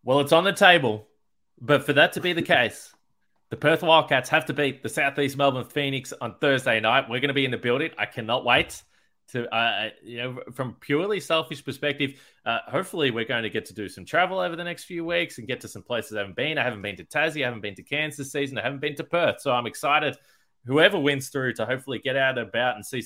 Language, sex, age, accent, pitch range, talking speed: English, male, 20-39, Australian, 120-150 Hz, 250 wpm